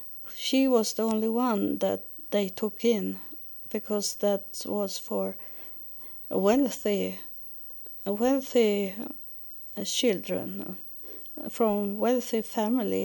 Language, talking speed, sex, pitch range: English, 85 wpm, female, 195-240 Hz